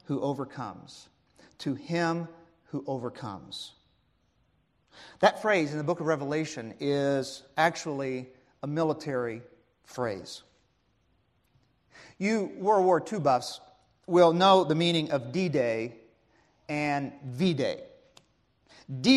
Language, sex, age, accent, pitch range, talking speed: English, male, 40-59, American, 140-190 Hz, 105 wpm